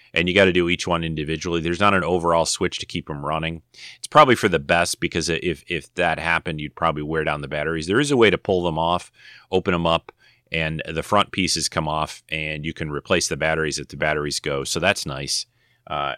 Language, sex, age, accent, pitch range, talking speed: English, male, 30-49, American, 80-95 Hz, 235 wpm